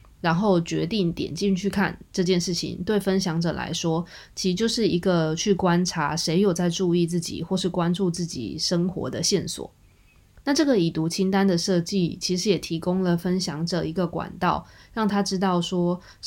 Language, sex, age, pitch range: Chinese, female, 20-39, 165-190 Hz